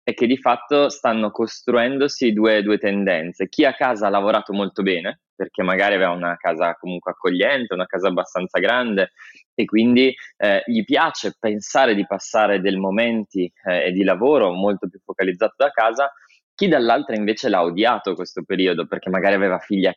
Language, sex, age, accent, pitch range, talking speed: Italian, male, 20-39, native, 100-120 Hz, 170 wpm